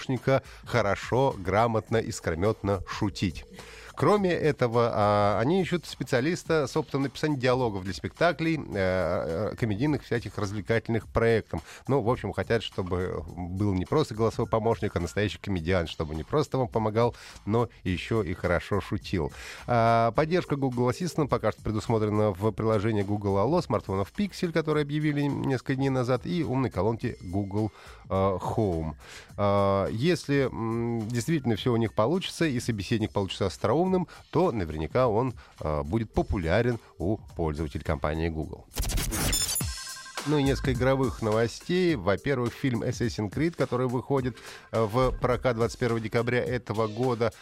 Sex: male